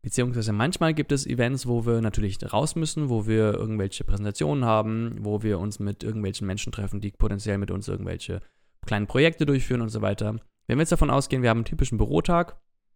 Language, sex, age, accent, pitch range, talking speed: German, male, 20-39, German, 110-140 Hz, 200 wpm